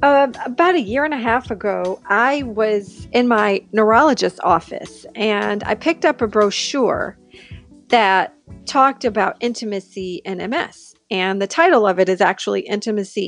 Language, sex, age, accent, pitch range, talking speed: English, female, 40-59, American, 195-245 Hz, 155 wpm